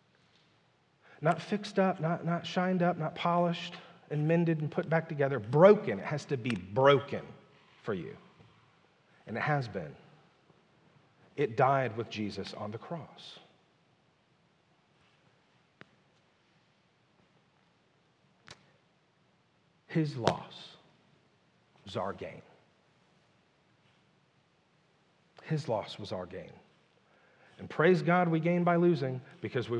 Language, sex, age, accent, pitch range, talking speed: English, male, 40-59, American, 135-175 Hz, 105 wpm